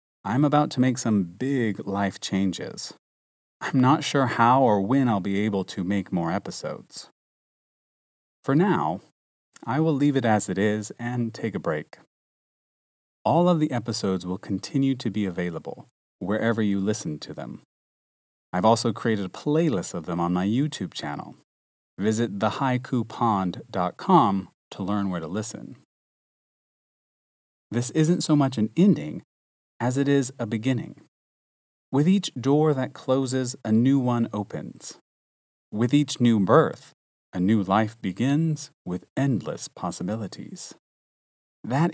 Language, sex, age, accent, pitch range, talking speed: English, male, 30-49, American, 100-135 Hz, 140 wpm